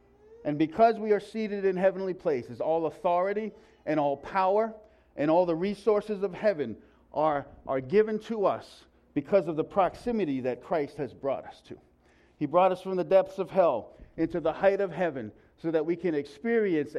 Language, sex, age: English, male, 50-69